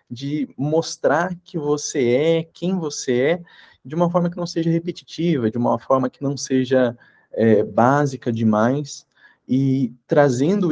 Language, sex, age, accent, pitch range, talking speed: English, male, 20-39, Brazilian, 130-175 Hz, 140 wpm